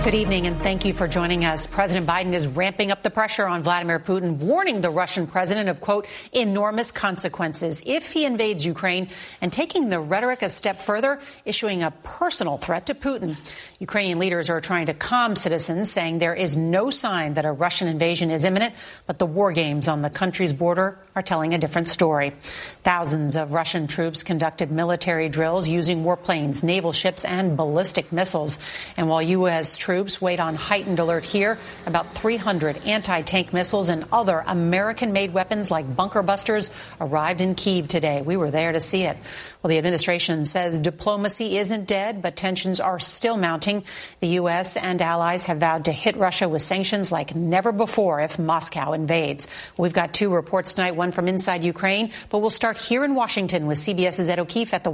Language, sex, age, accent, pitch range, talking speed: English, female, 40-59, American, 165-200 Hz, 185 wpm